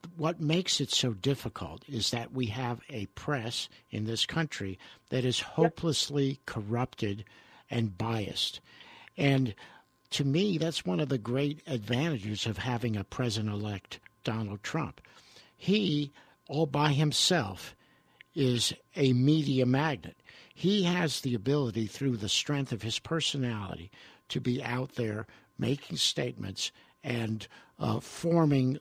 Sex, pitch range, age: male, 115-145 Hz, 60-79